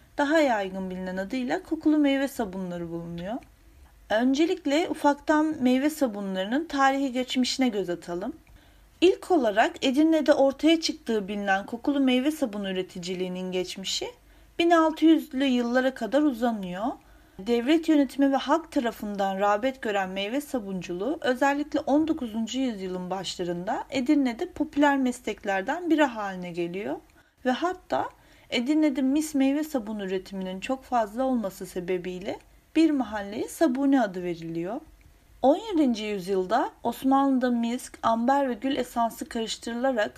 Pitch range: 195-290 Hz